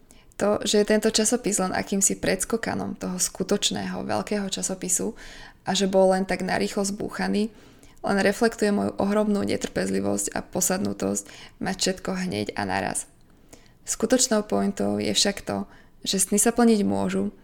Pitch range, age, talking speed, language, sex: 175-210 Hz, 20-39, 140 wpm, Slovak, female